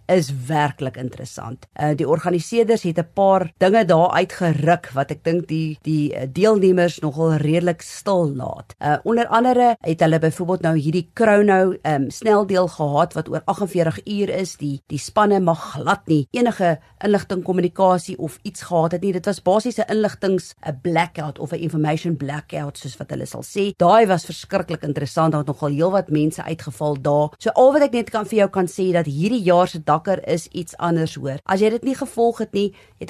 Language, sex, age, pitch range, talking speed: English, female, 40-59, 155-200 Hz, 185 wpm